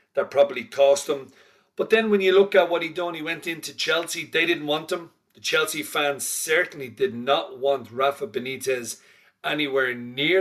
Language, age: English, 40-59